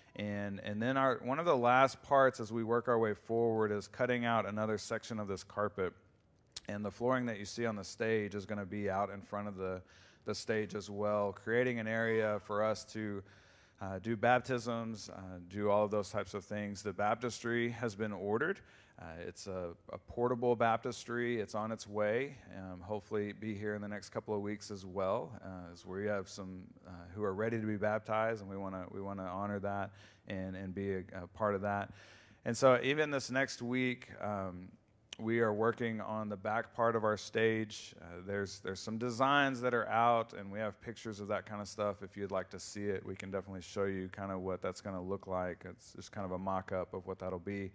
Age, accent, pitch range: 40-59, American, 95-115 Hz